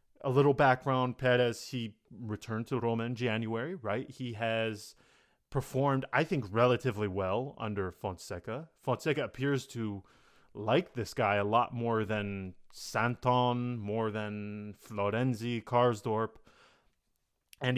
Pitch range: 105-130 Hz